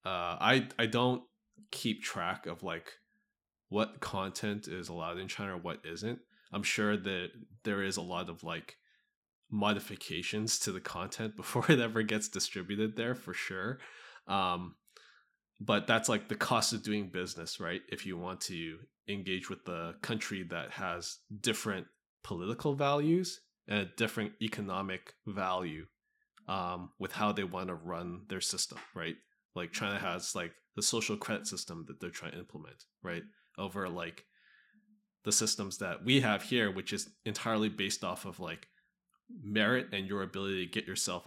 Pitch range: 95-120 Hz